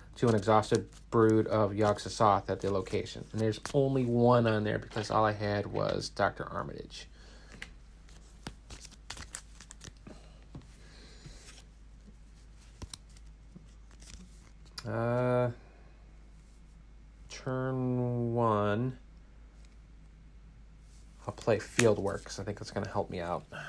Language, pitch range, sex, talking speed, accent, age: English, 105-130 Hz, male, 95 wpm, American, 40-59